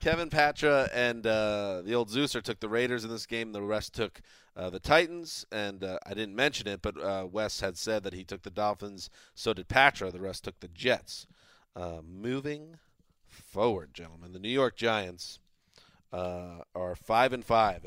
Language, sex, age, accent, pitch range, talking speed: English, male, 30-49, American, 100-125 Hz, 190 wpm